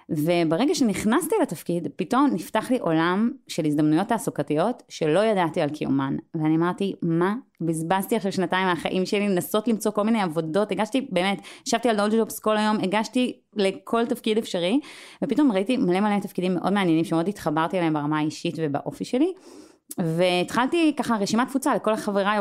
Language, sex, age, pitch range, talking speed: Hebrew, female, 30-49, 160-230 Hz, 160 wpm